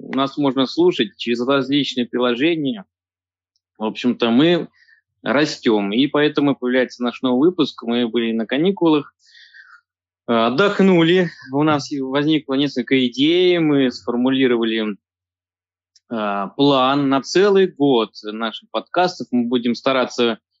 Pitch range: 115-150 Hz